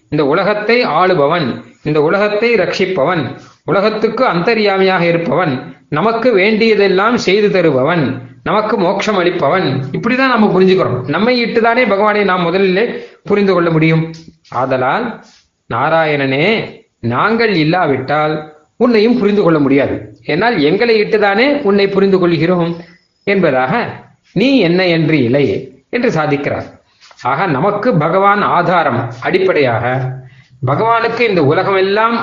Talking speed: 100 wpm